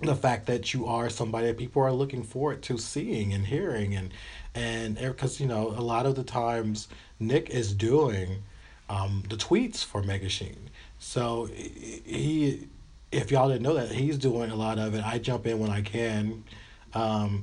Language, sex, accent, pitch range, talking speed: English, male, American, 105-130 Hz, 185 wpm